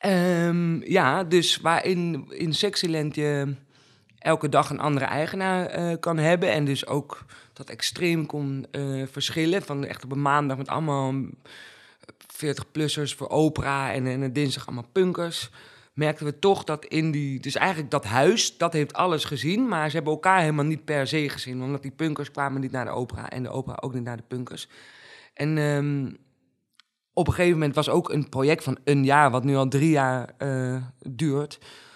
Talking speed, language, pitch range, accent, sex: 180 wpm, Dutch, 135-160 Hz, Dutch, male